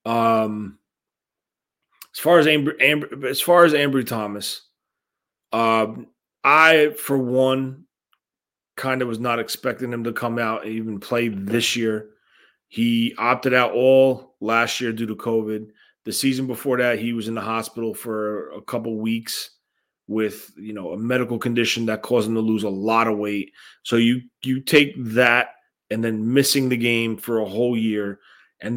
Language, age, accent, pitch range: English, 30-49, American, 115-135 Hz